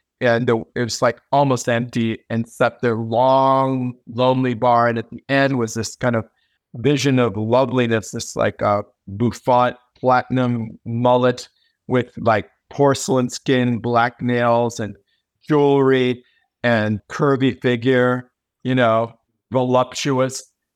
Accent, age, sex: American, 50-69, male